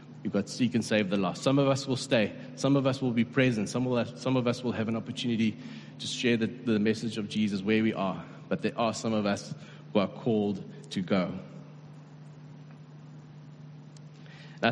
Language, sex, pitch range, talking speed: English, male, 110-140 Hz, 210 wpm